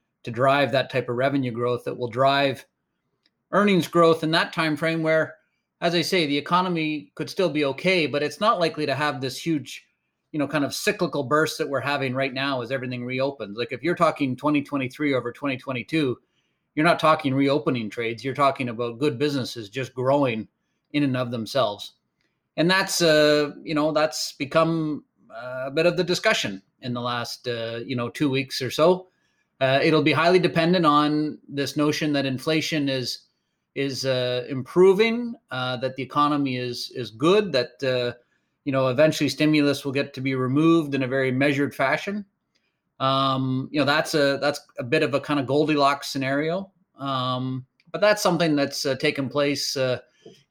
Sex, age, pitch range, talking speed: male, 30-49, 130-160 Hz, 185 wpm